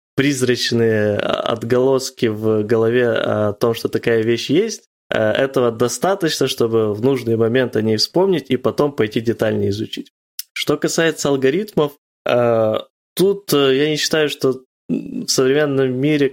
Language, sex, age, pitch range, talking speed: Ukrainian, male, 20-39, 110-135 Hz, 130 wpm